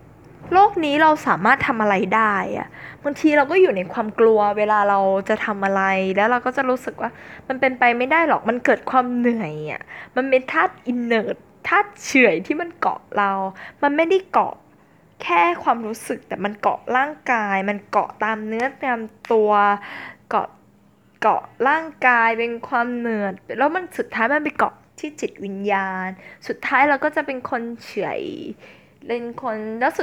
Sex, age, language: female, 10-29, Thai